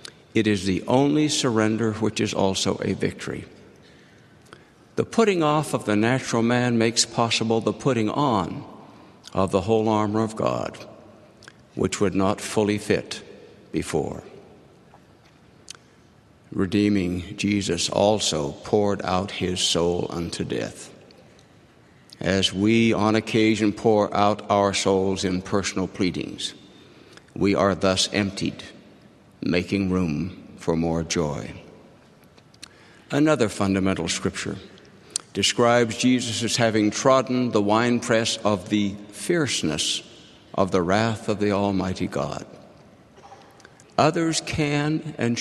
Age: 60-79